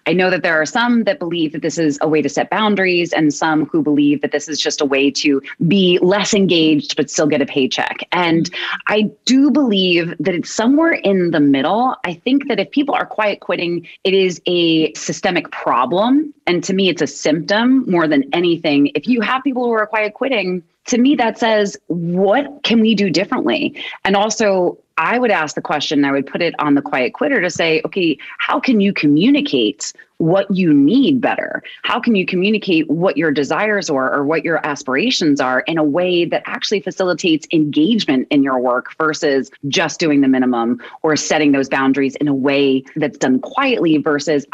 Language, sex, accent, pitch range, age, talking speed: English, female, American, 150-210 Hz, 30-49, 200 wpm